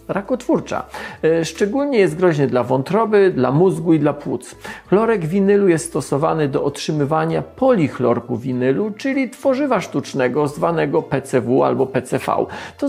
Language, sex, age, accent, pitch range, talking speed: Polish, male, 40-59, native, 140-200 Hz, 125 wpm